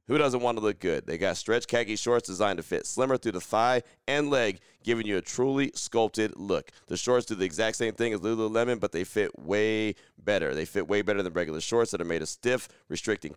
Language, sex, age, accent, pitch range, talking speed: English, male, 30-49, American, 95-115 Hz, 240 wpm